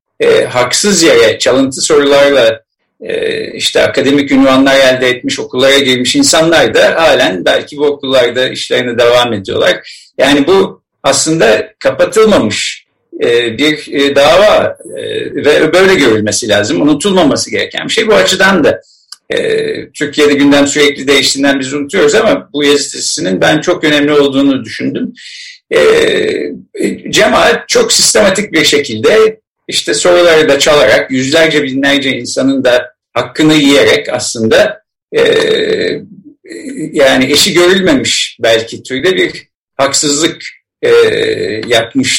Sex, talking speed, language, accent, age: male, 115 wpm, Turkish, native, 50-69